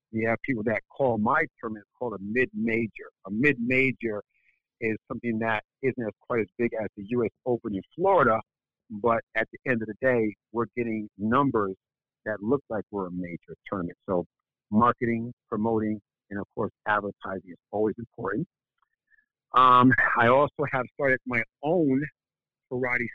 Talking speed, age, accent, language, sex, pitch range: 155 wpm, 50-69, American, English, male, 110-130 Hz